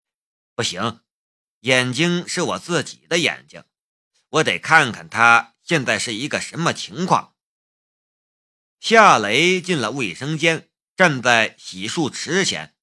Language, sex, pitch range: Chinese, male, 140-185 Hz